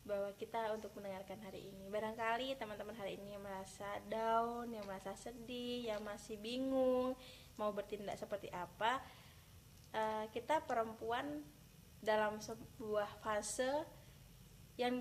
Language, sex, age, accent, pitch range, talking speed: Indonesian, female, 20-39, native, 200-225 Hz, 120 wpm